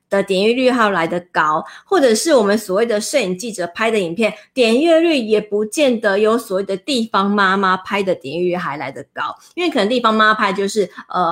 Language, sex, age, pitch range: Chinese, female, 30-49, 190-245 Hz